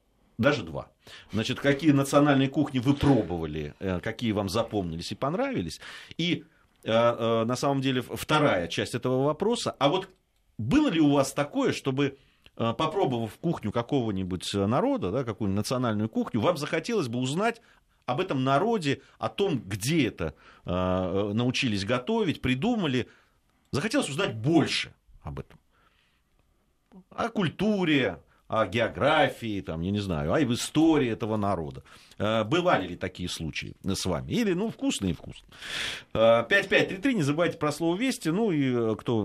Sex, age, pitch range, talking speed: male, 40-59, 95-150 Hz, 135 wpm